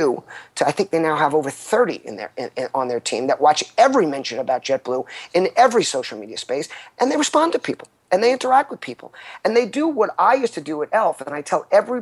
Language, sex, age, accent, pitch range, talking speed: English, male, 40-59, American, 140-185 Hz, 230 wpm